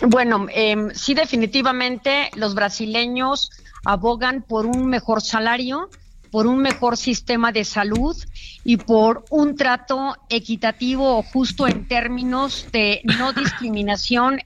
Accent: Mexican